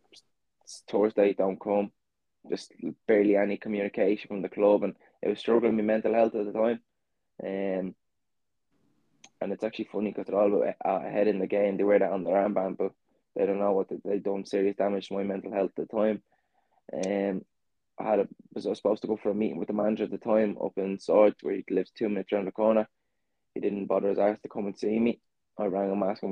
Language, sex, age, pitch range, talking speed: English, male, 20-39, 95-105 Hz, 225 wpm